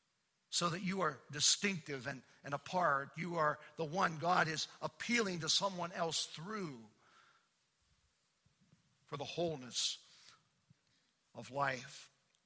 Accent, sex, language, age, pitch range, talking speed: American, male, English, 50-69, 145-190 Hz, 115 wpm